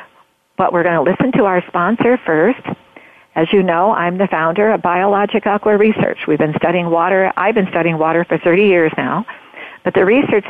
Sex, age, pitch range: female, 50-69, 170-200 Hz